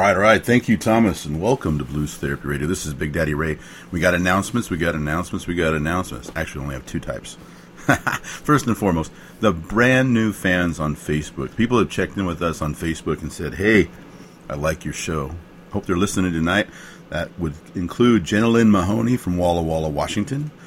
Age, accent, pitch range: 50-69, American, 80-100 Hz